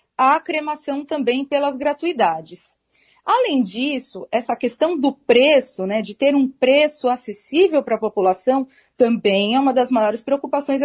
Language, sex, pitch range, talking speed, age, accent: Portuguese, female, 240-315 Hz, 145 wpm, 40-59, Brazilian